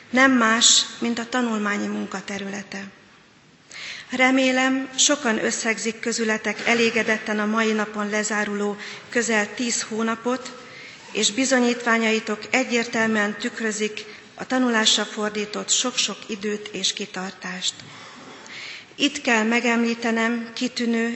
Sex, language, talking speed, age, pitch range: female, Hungarian, 95 wpm, 40-59, 210-245 Hz